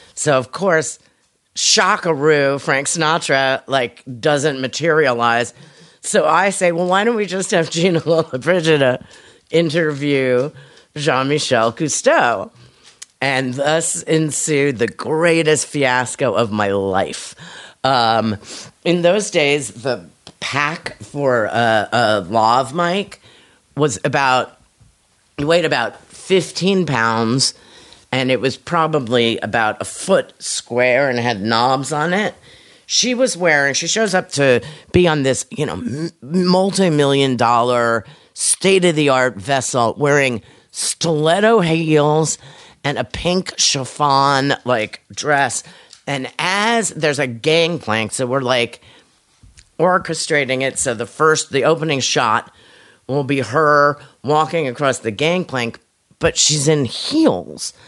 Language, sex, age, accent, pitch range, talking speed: English, female, 40-59, American, 130-165 Hz, 120 wpm